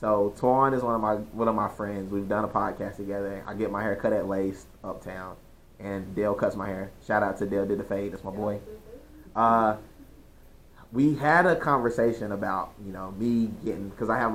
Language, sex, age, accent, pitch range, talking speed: English, male, 20-39, American, 100-115 Hz, 215 wpm